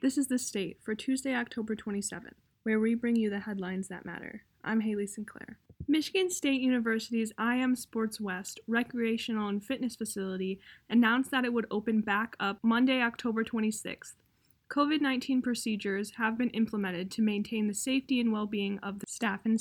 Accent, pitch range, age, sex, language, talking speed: American, 205-245 Hz, 10-29, female, English, 165 wpm